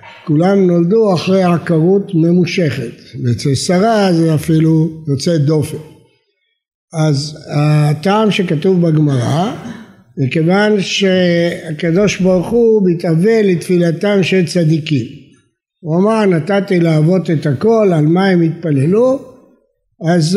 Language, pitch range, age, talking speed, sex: Hebrew, 160-205 Hz, 60-79, 100 wpm, male